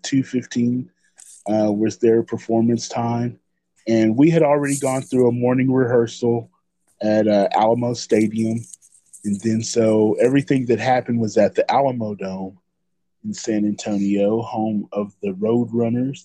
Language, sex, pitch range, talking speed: English, male, 110-120 Hz, 135 wpm